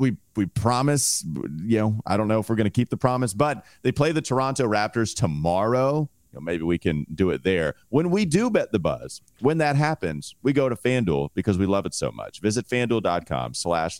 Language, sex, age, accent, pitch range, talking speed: English, male, 40-59, American, 90-125 Hz, 225 wpm